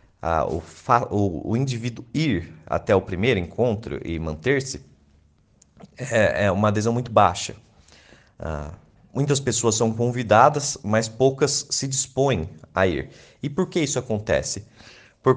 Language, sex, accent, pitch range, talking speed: Portuguese, male, Brazilian, 90-130 Hz, 140 wpm